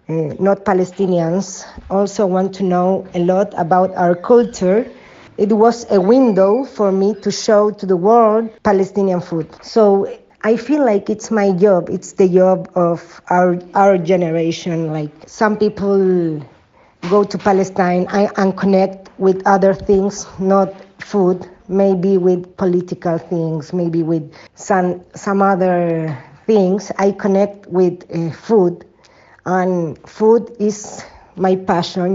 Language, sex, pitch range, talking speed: English, female, 180-210 Hz, 130 wpm